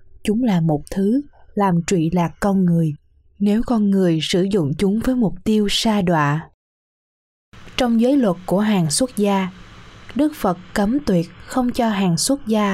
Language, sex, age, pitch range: Vietnamese, female, 20-39, 160-215 Hz